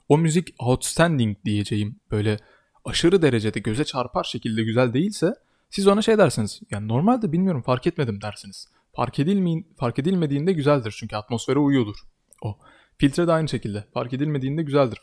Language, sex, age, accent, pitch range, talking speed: Turkish, male, 20-39, native, 110-140 Hz, 150 wpm